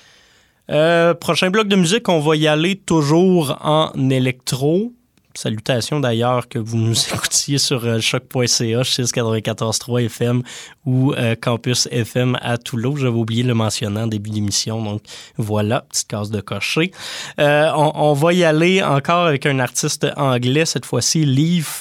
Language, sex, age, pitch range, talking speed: French, male, 20-39, 120-150 Hz, 155 wpm